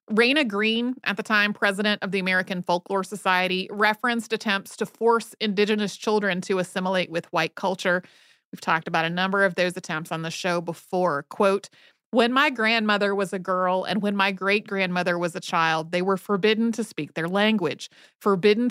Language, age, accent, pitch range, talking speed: English, 30-49, American, 185-235 Hz, 185 wpm